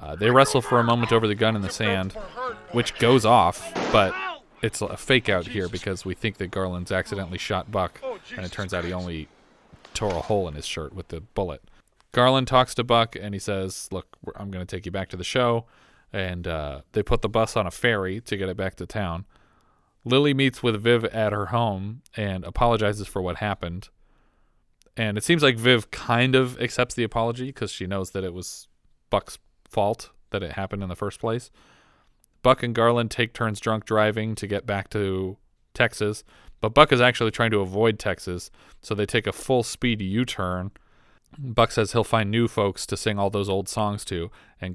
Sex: male